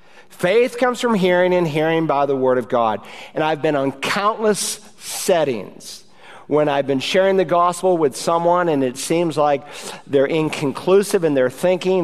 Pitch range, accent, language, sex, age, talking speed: 150-190 Hz, American, English, male, 50-69, 170 wpm